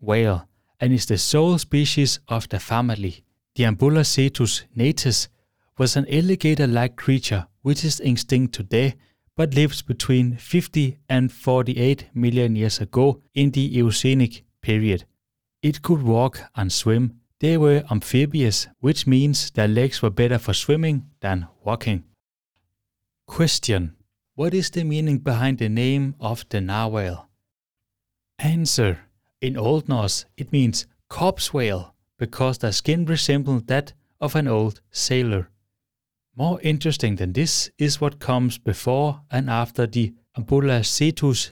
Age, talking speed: 30-49, 130 wpm